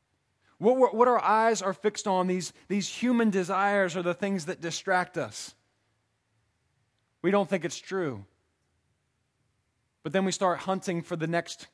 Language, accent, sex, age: English, American, male, 20-39